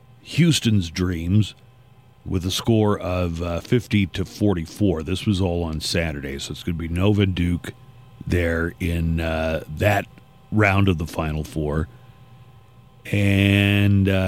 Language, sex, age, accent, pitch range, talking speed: English, male, 40-59, American, 90-120 Hz, 140 wpm